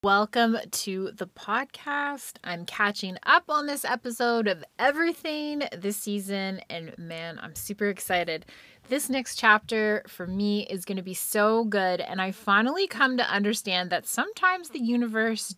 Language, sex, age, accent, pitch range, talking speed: English, female, 20-39, American, 185-255 Hz, 155 wpm